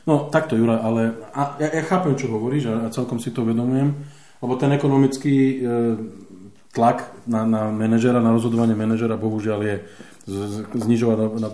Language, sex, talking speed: Slovak, male, 140 wpm